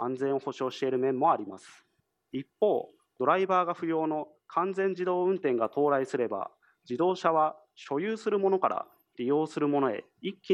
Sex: male